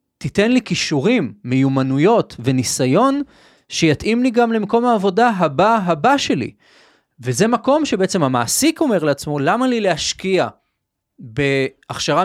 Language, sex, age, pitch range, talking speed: Hebrew, male, 30-49, 130-185 Hz, 110 wpm